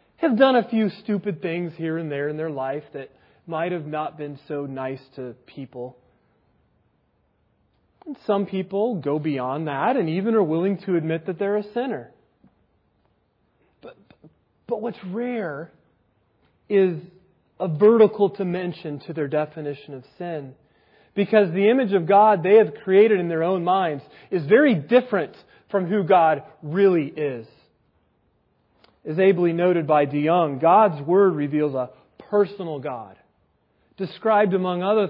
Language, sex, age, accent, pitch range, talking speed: English, male, 30-49, American, 150-210 Hz, 140 wpm